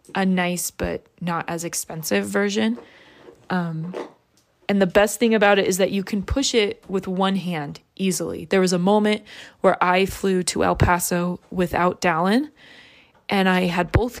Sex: female